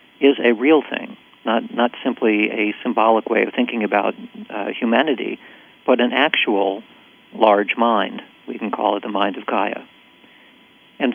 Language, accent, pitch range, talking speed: English, American, 105-120 Hz, 155 wpm